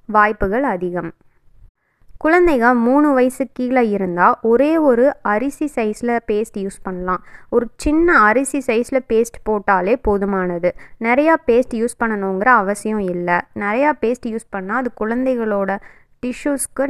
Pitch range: 200-255 Hz